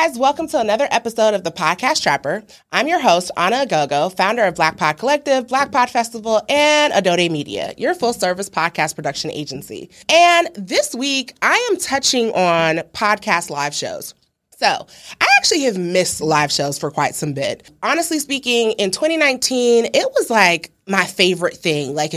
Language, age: English, 30-49